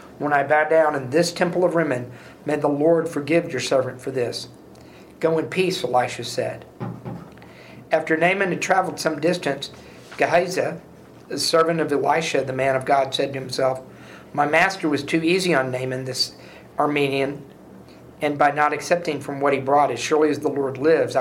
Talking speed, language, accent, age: 180 wpm, English, American, 50-69